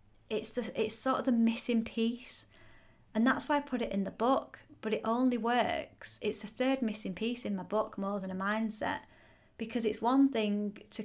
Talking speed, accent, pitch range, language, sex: 205 wpm, British, 200-230 Hz, English, female